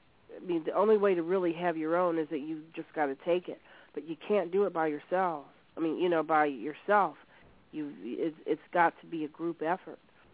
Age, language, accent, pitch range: 40-59, English, American, 160-200 Hz